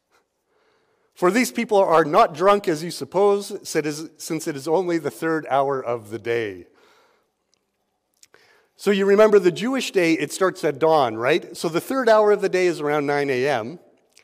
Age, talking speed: 50-69, 175 wpm